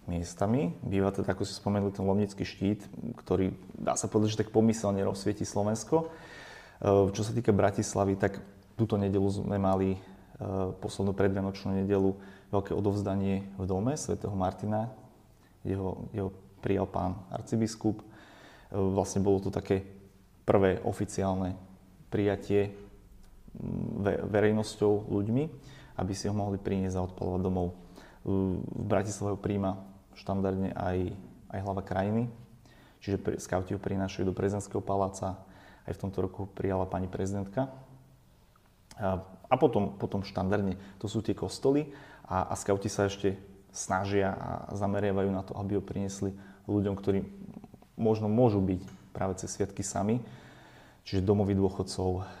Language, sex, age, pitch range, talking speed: Slovak, male, 30-49, 95-105 Hz, 130 wpm